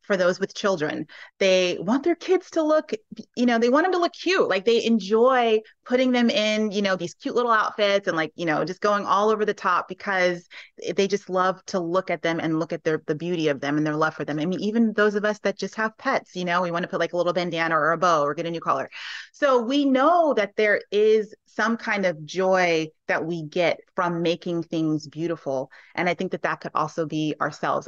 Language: English